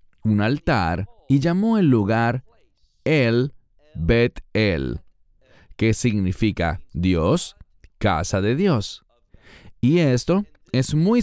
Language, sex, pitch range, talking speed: English, male, 95-145 Hz, 100 wpm